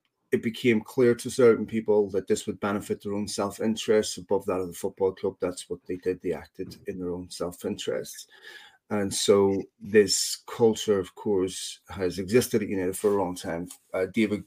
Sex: male